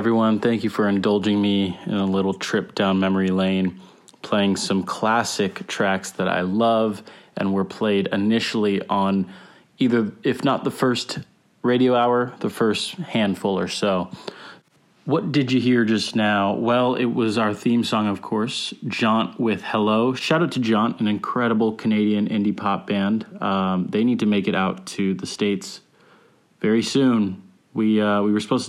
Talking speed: 170 wpm